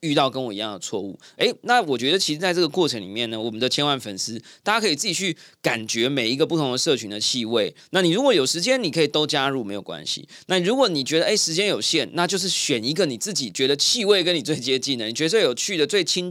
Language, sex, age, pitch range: Chinese, male, 20-39, 115-165 Hz